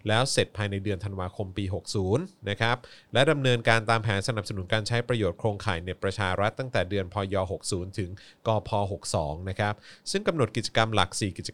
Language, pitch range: Thai, 100-125 Hz